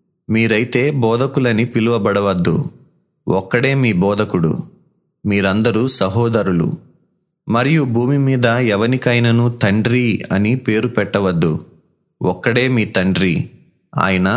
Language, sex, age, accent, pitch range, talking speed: Telugu, male, 30-49, native, 100-130 Hz, 85 wpm